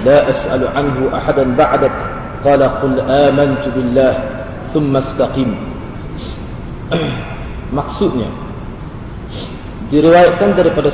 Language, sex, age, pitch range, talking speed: Malay, male, 40-59, 125-150 Hz, 80 wpm